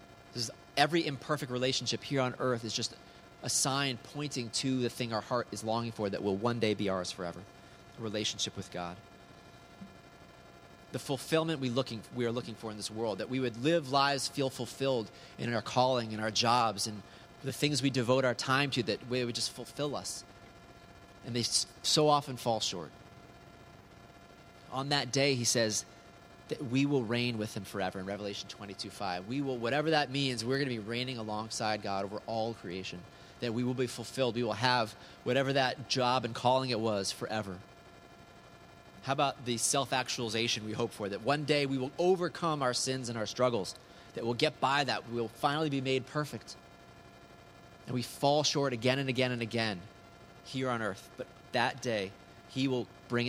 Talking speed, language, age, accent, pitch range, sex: 190 wpm, English, 30-49, American, 110-135 Hz, male